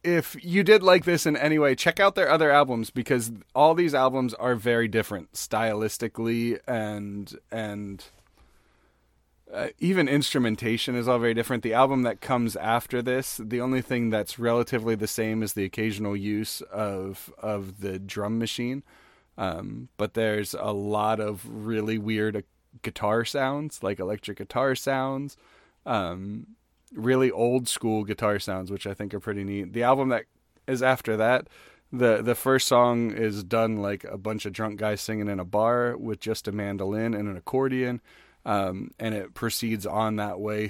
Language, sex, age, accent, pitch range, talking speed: English, male, 30-49, American, 105-125 Hz, 170 wpm